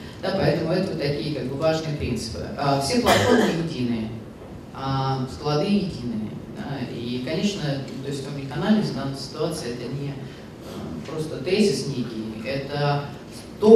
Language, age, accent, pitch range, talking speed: Russian, 30-49, native, 135-180 Hz, 140 wpm